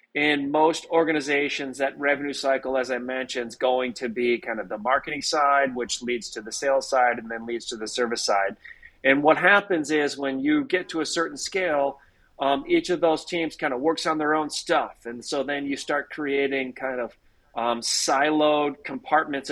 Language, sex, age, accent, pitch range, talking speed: English, male, 30-49, American, 130-155 Hz, 200 wpm